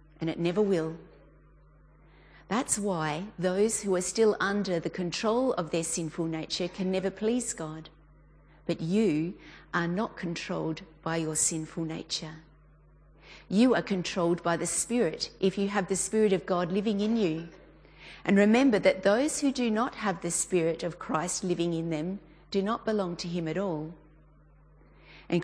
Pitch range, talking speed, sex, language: 165-205 Hz, 165 wpm, female, English